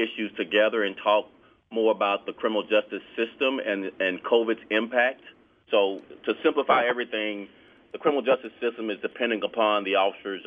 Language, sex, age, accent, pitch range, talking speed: English, male, 30-49, American, 100-125 Hz, 155 wpm